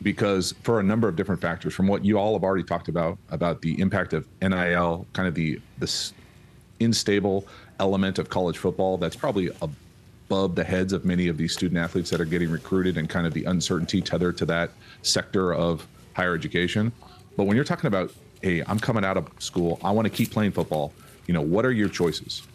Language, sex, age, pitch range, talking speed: English, male, 40-59, 85-100 Hz, 210 wpm